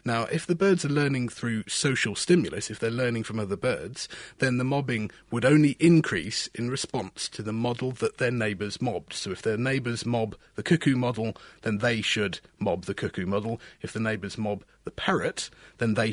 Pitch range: 110-145 Hz